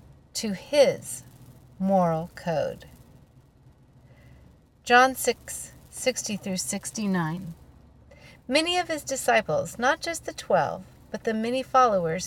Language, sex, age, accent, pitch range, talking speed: English, female, 40-59, American, 170-240 Hz, 105 wpm